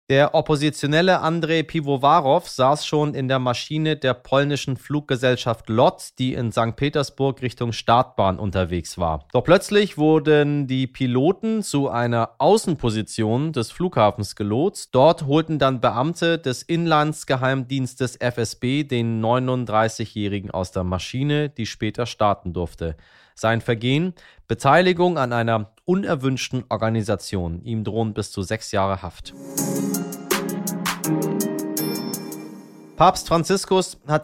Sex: male